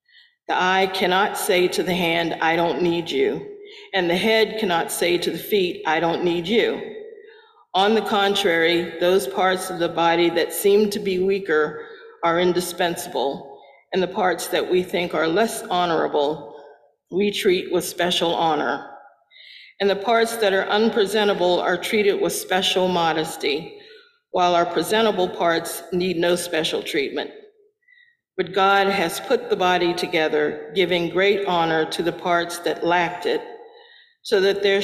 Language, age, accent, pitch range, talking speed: English, 50-69, American, 170-225 Hz, 155 wpm